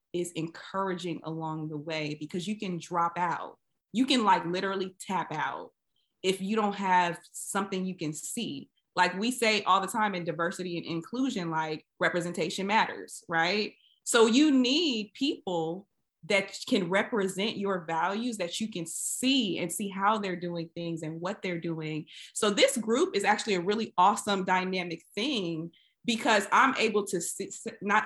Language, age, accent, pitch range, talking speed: English, 20-39, American, 165-205 Hz, 165 wpm